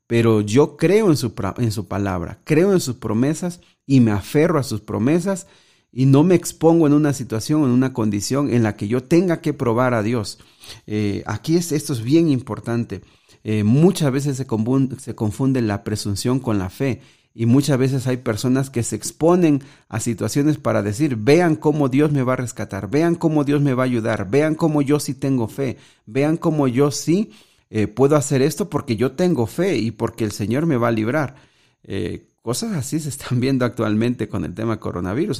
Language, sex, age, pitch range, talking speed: Spanish, male, 40-59, 110-145 Hz, 195 wpm